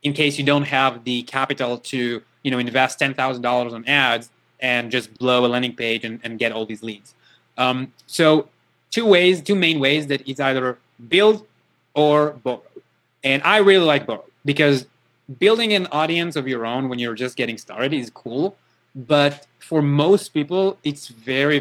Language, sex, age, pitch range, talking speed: English, male, 20-39, 125-160 Hz, 180 wpm